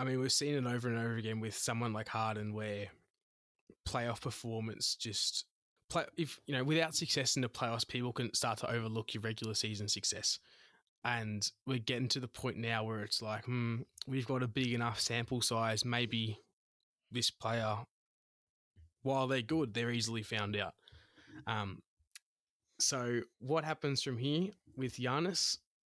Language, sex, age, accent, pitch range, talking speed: English, male, 20-39, Australian, 110-130 Hz, 165 wpm